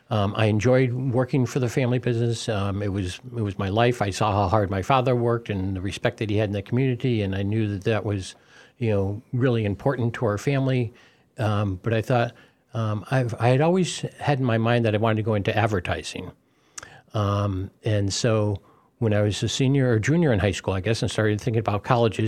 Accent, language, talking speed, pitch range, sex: American, English, 225 wpm, 105-125 Hz, male